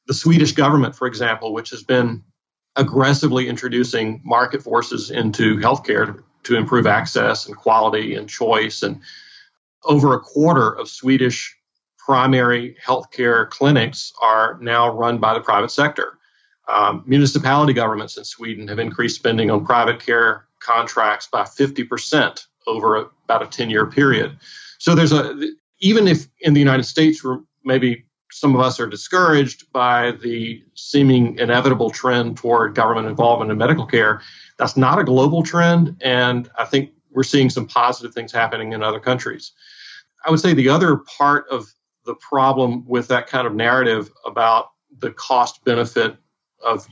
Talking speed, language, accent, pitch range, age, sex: 155 wpm, English, American, 115-140 Hz, 40-59, male